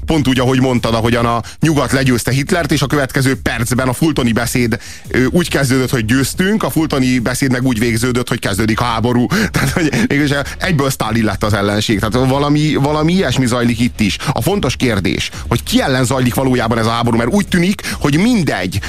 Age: 30-49